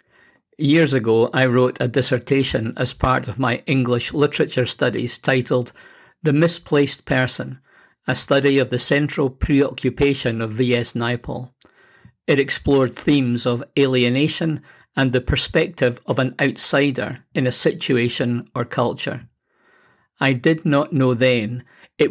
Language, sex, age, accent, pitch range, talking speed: English, male, 50-69, British, 125-145 Hz, 130 wpm